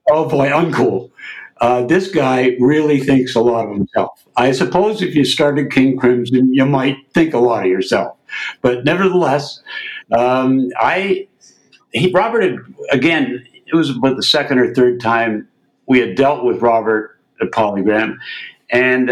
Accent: American